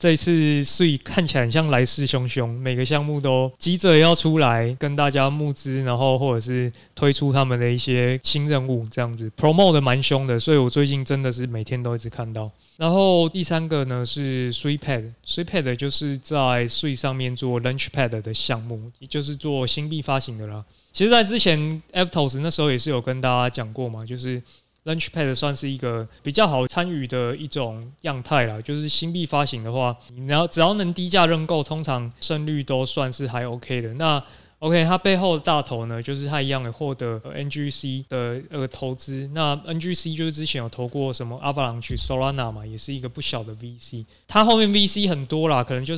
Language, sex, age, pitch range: Chinese, male, 20-39, 125-155 Hz